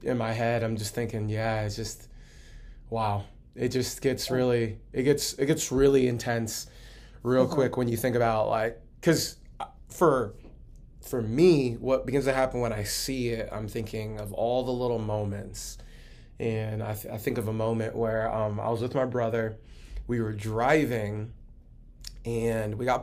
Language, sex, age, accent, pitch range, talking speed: English, male, 20-39, American, 110-130 Hz, 175 wpm